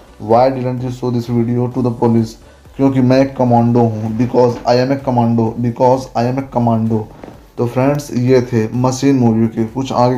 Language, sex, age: Hindi, male, 20-39